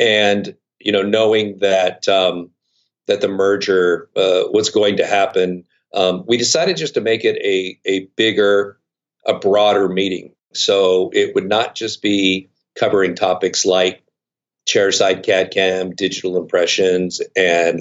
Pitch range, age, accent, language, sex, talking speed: 95-120 Hz, 50-69, American, English, male, 140 wpm